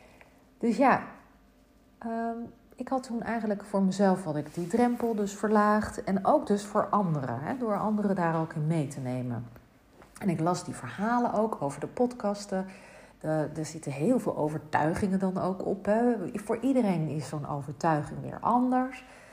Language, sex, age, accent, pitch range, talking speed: Dutch, female, 40-59, Dutch, 160-225 Hz, 150 wpm